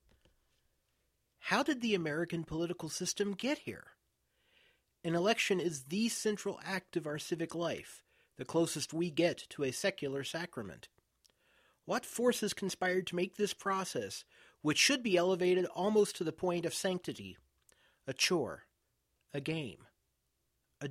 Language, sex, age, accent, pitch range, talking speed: English, male, 40-59, American, 130-185 Hz, 140 wpm